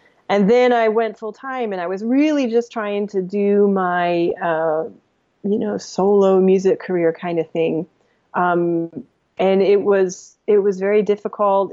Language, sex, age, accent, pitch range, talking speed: English, female, 30-49, American, 175-215 Hz, 165 wpm